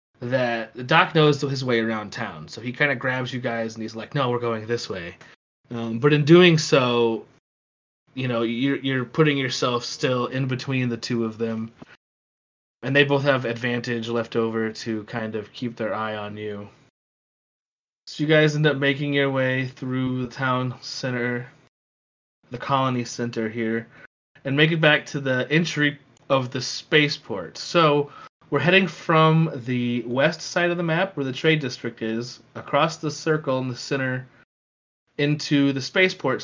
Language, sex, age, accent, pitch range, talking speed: English, male, 20-39, American, 115-145 Hz, 175 wpm